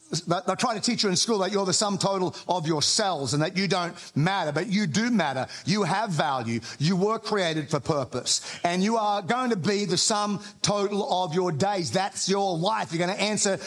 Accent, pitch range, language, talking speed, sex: Australian, 175-220 Hz, English, 220 wpm, male